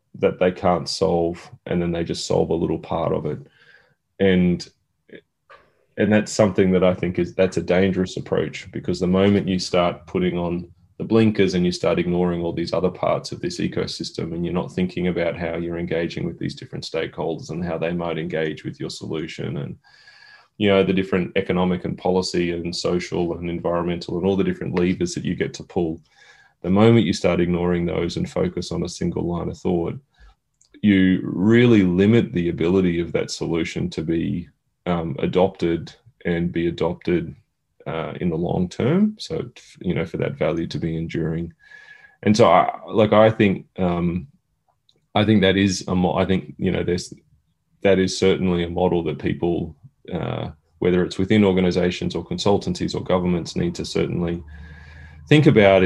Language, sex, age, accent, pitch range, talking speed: English, male, 20-39, Australian, 85-100 Hz, 185 wpm